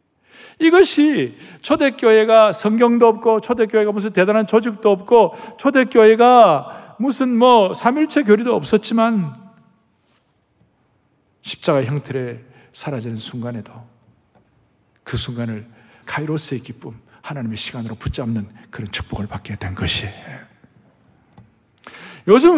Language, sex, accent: Korean, male, native